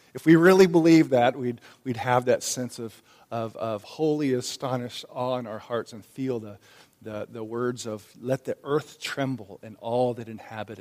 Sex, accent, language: male, American, English